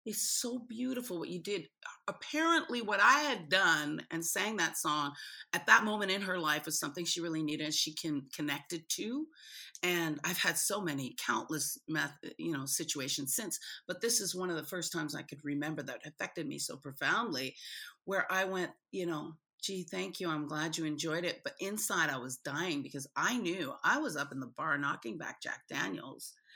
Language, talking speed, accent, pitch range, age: English, 200 wpm, American, 155-230 Hz, 40-59